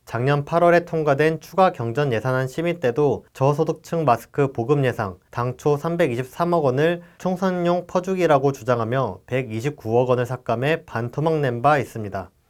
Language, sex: Korean, male